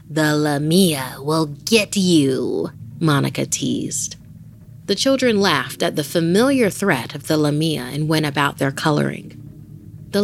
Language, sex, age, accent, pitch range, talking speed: English, female, 30-49, American, 140-185 Hz, 135 wpm